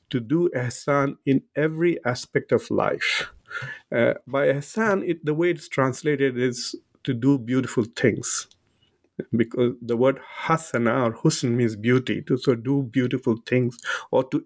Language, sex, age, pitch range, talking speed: English, male, 50-69, 125-150 Hz, 150 wpm